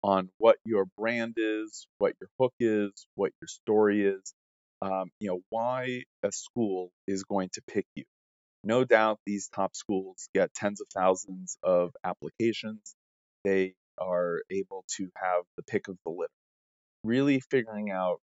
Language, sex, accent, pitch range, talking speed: English, male, American, 90-105 Hz, 160 wpm